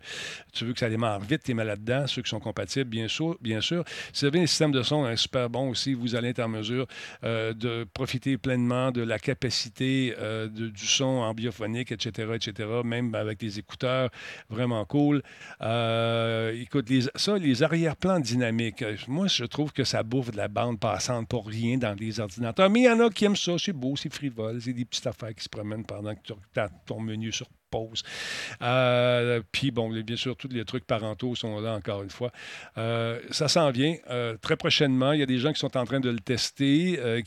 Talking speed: 220 wpm